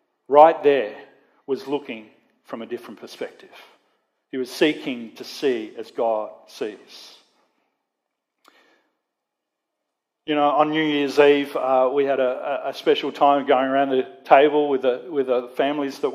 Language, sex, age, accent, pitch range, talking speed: English, male, 40-59, Australian, 130-150 Hz, 140 wpm